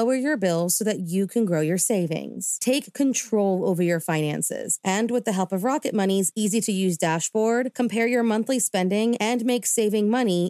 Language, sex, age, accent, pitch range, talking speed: English, female, 30-49, American, 180-225 Hz, 195 wpm